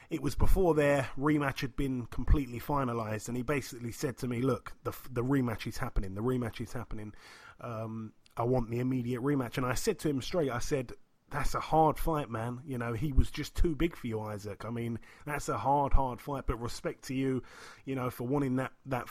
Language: English